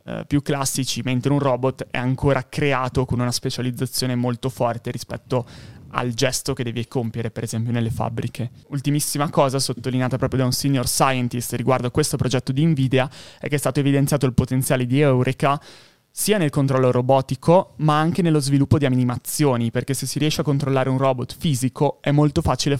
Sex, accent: male, native